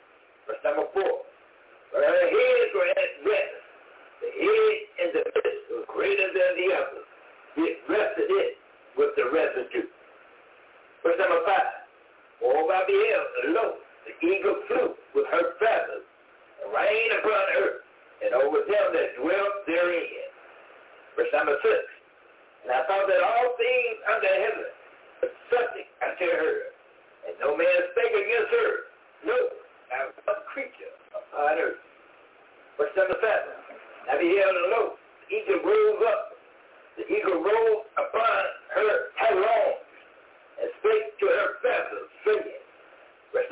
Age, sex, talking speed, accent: 60-79, male, 140 wpm, American